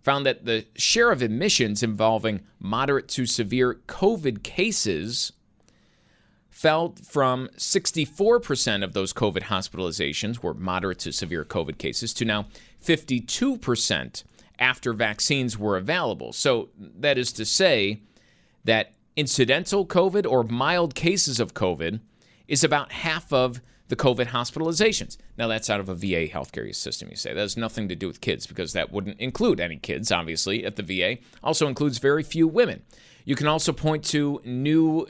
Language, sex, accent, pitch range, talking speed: English, male, American, 110-155 Hz, 155 wpm